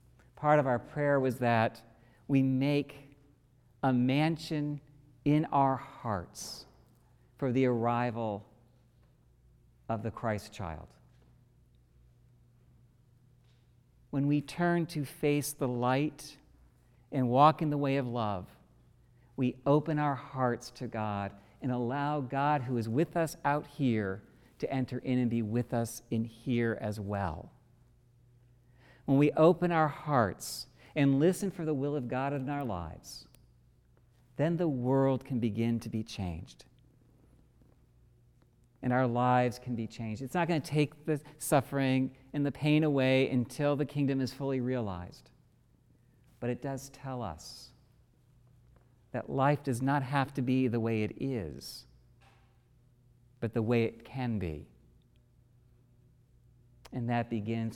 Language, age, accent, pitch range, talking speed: English, 50-69, American, 115-140 Hz, 135 wpm